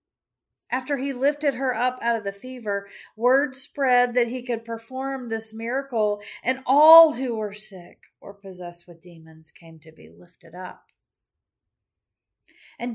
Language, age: English, 40-59